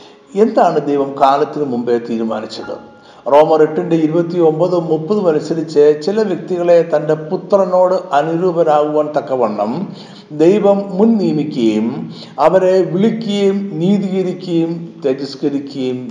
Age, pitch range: 50-69, 140-185 Hz